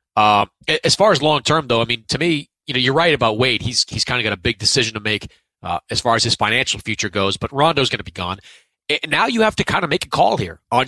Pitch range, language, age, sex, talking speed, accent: 110-150 Hz, English, 30-49, male, 280 wpm, American